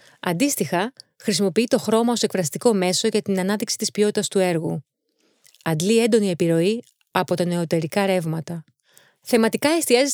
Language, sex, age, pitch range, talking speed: Greek, female, 30-49, 175-220 Hz, 135 wpm